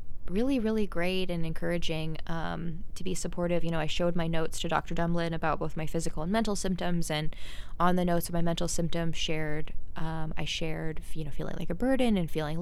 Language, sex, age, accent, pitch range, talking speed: English, female, 20-39, American, 155-175 Hz, 215 wpm